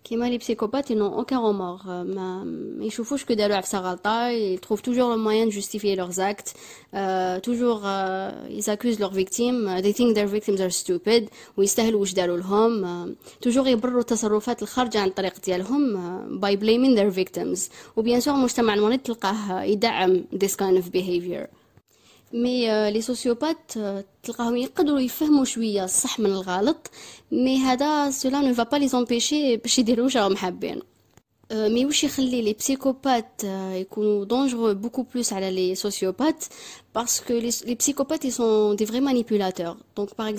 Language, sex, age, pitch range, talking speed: Arabic, female, 20-39, 195-250 Hz, 115 wpm